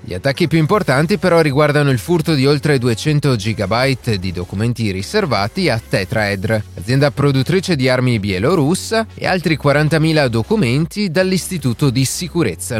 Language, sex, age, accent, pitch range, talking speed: Italian, male, 30-49, native, 110-160 Hz, 135 wpm